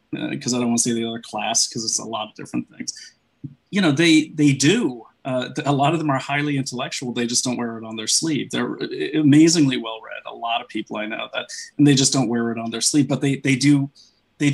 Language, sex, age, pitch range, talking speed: English, male, 30-49, 120-145 Hz, 260 wpm